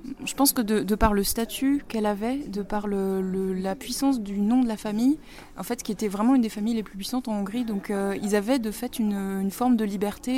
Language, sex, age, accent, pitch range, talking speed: French, female, 20-39, French, 195-230 Hz, 260 wpm